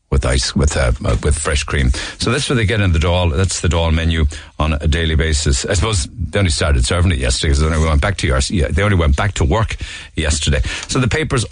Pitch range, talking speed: 80-100 Hz, 255 wpm